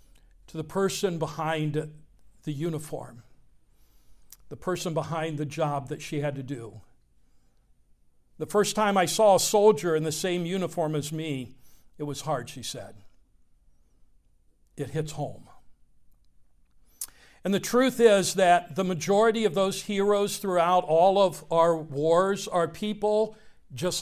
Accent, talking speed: American, 135 wpm